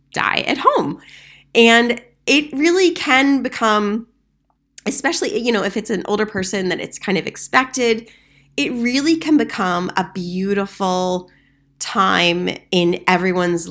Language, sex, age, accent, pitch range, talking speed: English, female, 20-39, American, 170-215 Hz, 130 wpm